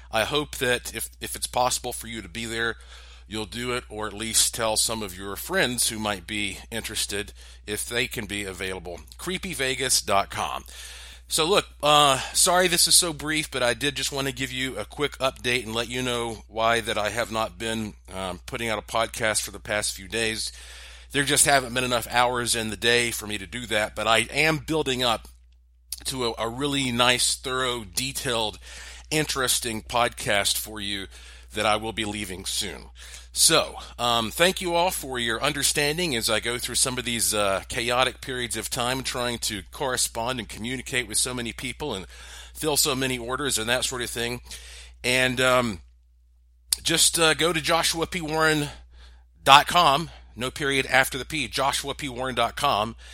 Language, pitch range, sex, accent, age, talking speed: English, 100-130 Hz, male, American, 40-59, 180 wpm